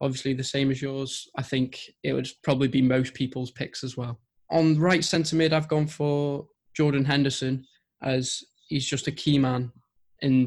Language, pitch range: English, 130-145 Hz